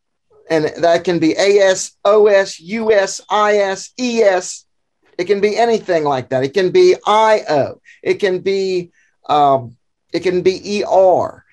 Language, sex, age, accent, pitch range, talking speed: English, male, 50-69, American, 135-185 Hz, 170 wpm